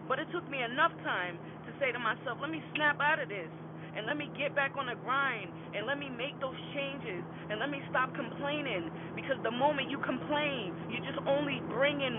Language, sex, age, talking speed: English, female, 20-39, 220 wpm